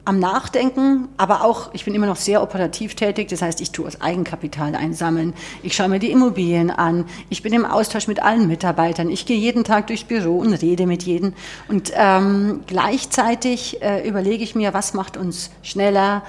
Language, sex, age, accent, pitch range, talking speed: German, female, 50-69, German, 175-230 Hz, 190 wpm